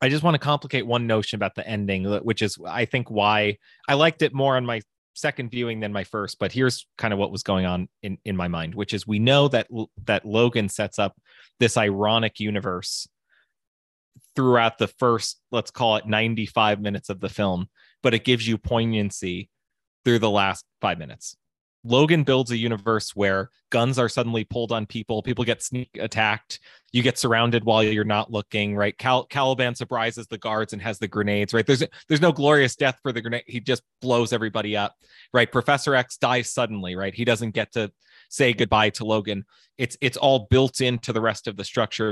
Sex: male